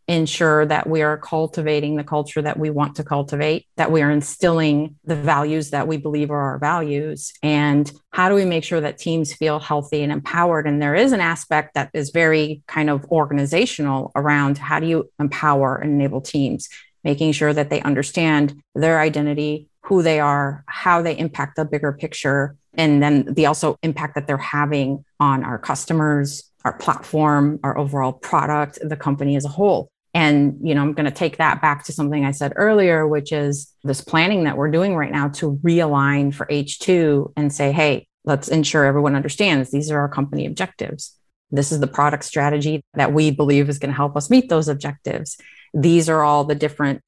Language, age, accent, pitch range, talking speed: English, 30-49, American, 145-155 Hz, 195 wpm